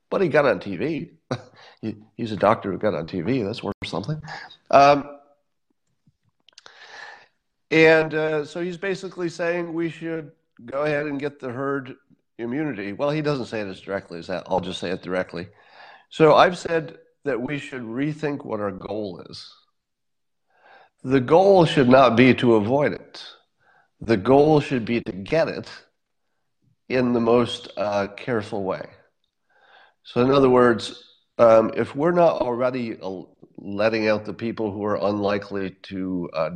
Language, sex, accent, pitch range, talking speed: English, male, American, 100-145 Hz, 155 wpm